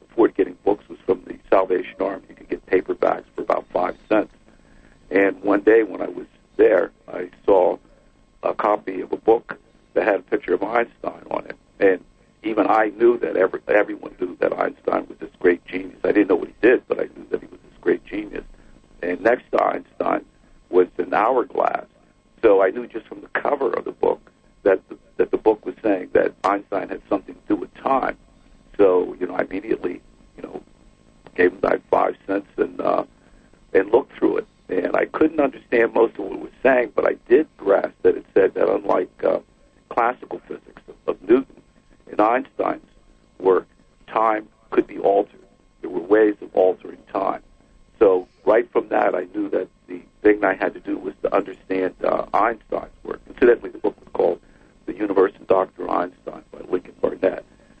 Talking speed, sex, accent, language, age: 195 wpm, male, American, English, 60-79